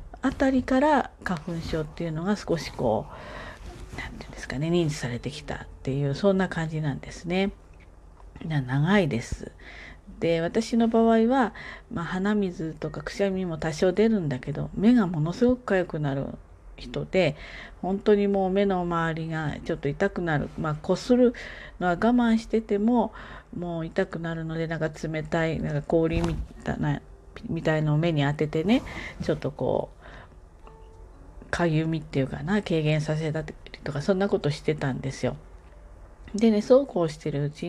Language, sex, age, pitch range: Japanese, female, 40-59, 155-215 Hz